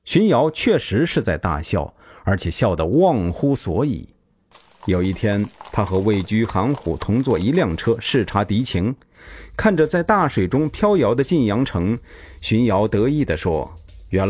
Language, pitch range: Chinese, 90-140 Hz